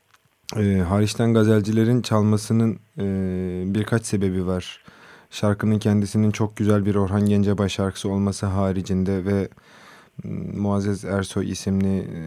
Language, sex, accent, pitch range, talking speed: Turkish, male, native, 95-110 Hz, 110 wpm